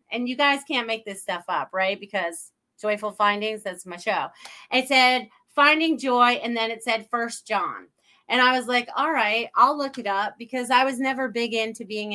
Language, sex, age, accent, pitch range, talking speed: English, female, 30-49, American, 210-250 Hz, 210 wpm